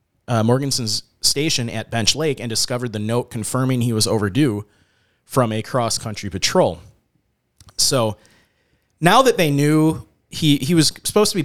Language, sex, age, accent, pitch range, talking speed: English, male, 30-49, American, 110-140 Hz, 150 wpm